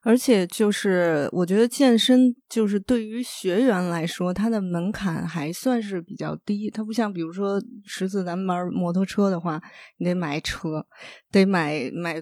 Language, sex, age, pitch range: Chinese, female, 20-39, 180-240 Hz